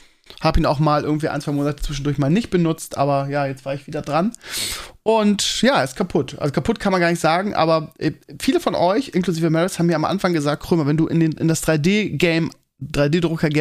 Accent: German